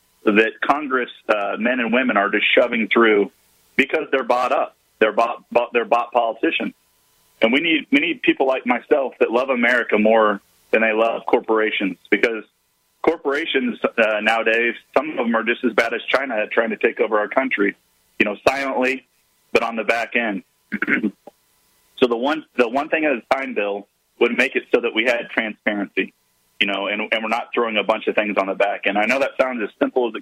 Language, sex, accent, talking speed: English, male, American, 210 wpm